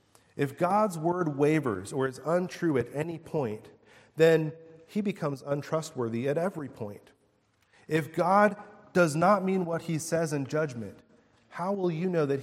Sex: male